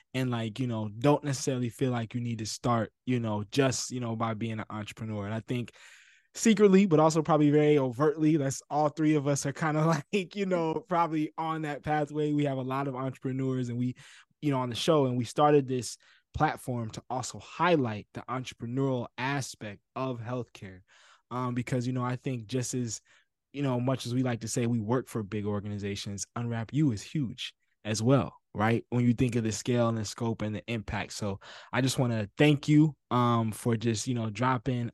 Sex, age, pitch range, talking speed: male, 20-39, 115-135 Hz, 215 wpm